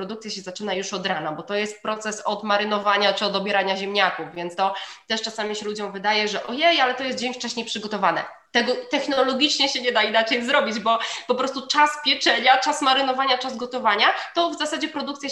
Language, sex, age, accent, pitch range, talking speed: Polish, female, 20-39, native, 200-260 Hz, 195 wpm